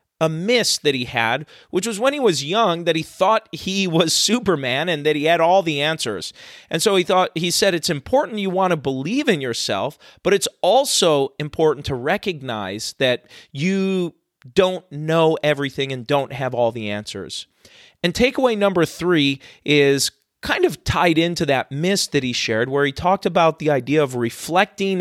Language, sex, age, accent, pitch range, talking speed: English, male, 40-59, American, 140-190 Hz, 185 wpm